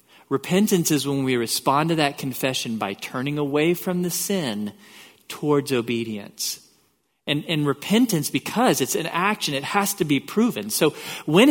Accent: American